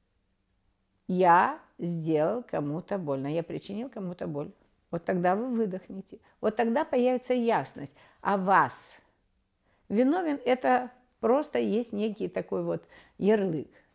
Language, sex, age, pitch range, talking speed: Russian, female, 60-79, 140-205 Hz, 110 wpm